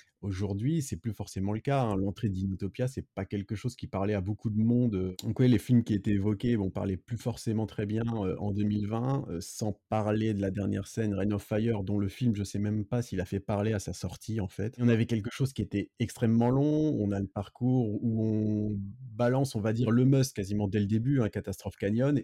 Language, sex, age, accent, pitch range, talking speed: French, male, 30-49, French, 100-120 Hz, 235 wpm